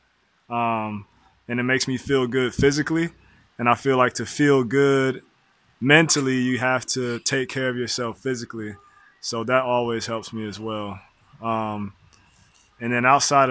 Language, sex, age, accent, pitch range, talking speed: English, male, 20-39, American, 115-135 Hz, 155 wpm